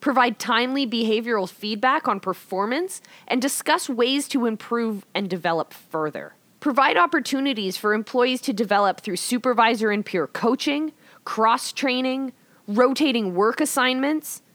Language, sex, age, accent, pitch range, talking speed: English, female, 20-39, American, 190-260 Hz, 120 wpm